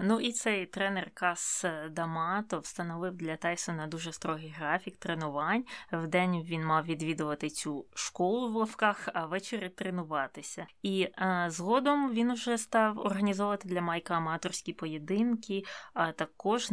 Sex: female